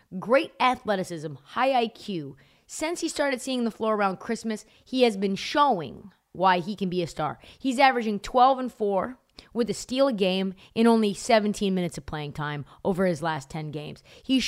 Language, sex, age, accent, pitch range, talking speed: English, female, 20-39, American, 180-250 Hz, 180 wpm